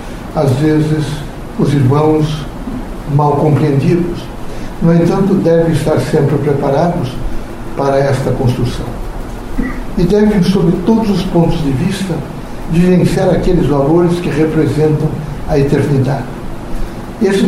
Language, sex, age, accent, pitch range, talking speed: Portuguese, male, 60-79, Brazilian, 140-170 Hz, 105 wpm